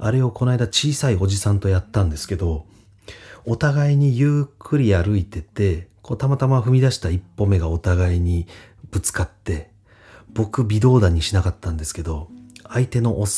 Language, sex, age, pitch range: Japanese, male, 40-59, 90-115 Hz